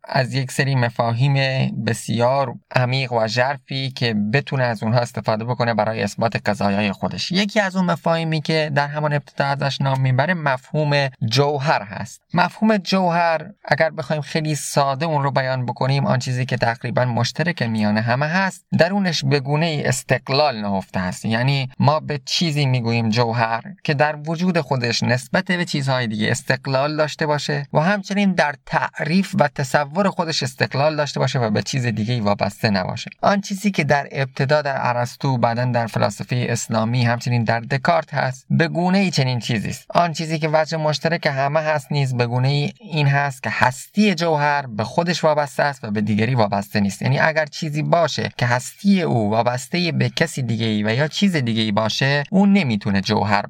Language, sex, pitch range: Persian, male, 120-160 Hz